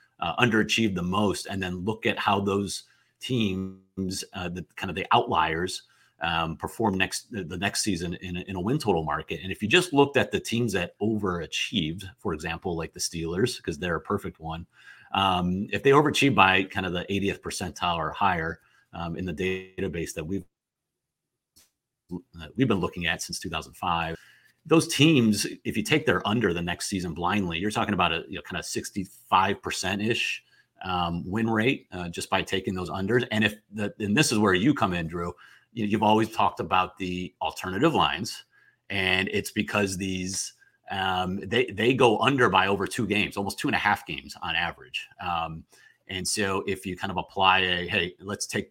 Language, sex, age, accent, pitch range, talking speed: English, male, 30-49, American, 90-110 Hz, 190 wpm